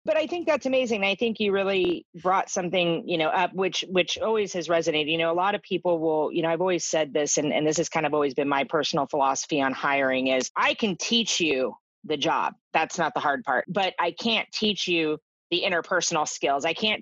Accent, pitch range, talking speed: American, 150-190 Hz, 235 wpm